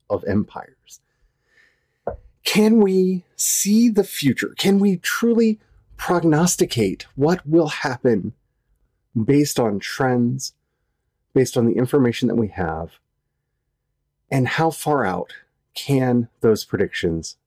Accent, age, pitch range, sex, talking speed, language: American, 40-59, 105-160 Hz, male, 105 wpm, English